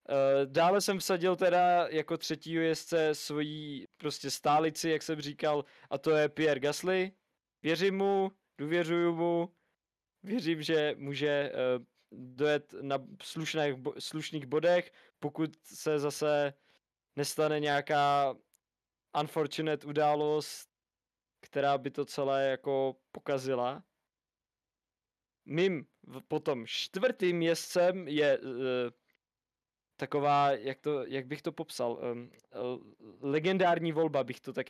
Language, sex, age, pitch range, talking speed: Czech, male, 20-39, 145-170 Hz, 105 wpm